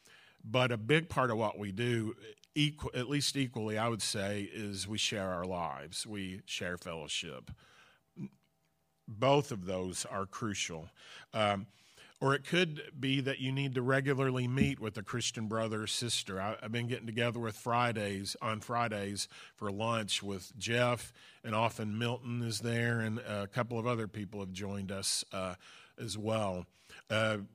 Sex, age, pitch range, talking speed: male, 40-59, 100-125 Hz, 165 wpm